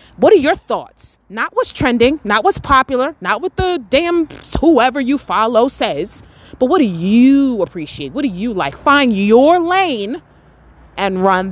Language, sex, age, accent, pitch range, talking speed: English, female, 20-39, American, 185-280 Hz, 165 wpm